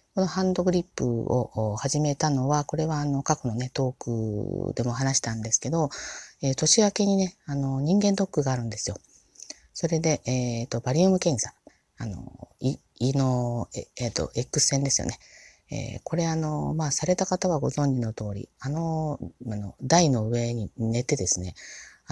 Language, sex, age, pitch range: Japanese, female, 40-59, 110-160 Hz